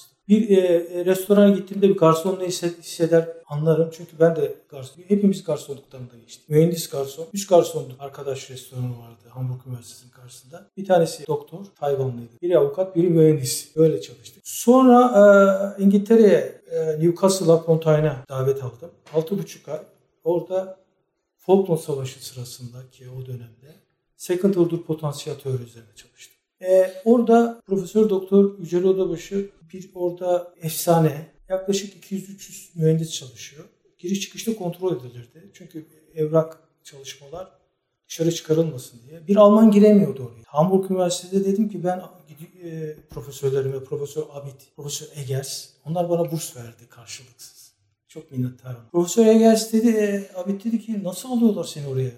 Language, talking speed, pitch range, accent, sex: Turkish, 135 wpm, 140-190 Hz, native, male